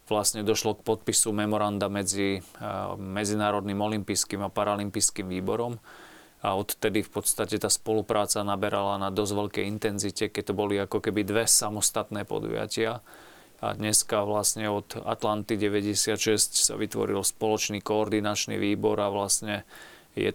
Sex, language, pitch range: male, Slovak, 100-110 Hz